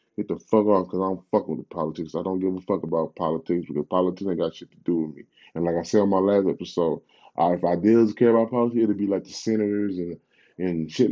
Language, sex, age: English, male, 20-39